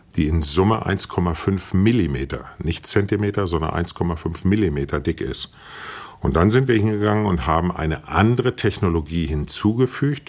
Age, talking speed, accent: 50-69, 135 wpm, German